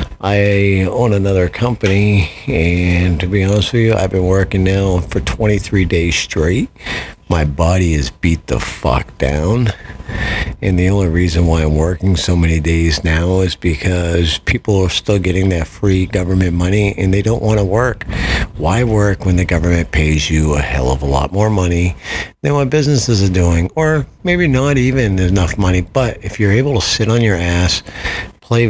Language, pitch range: English, 80-100 Hz